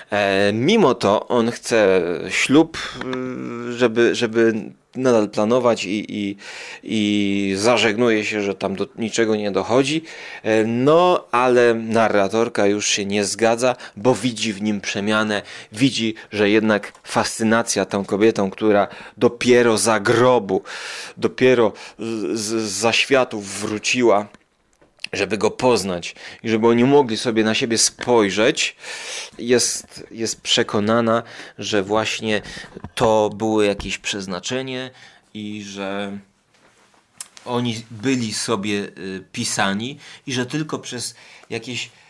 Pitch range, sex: 105-130 Hz, male